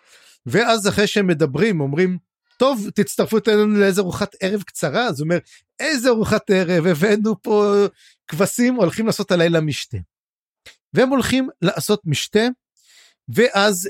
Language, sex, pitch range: Hebrew, male, 155-220 Hz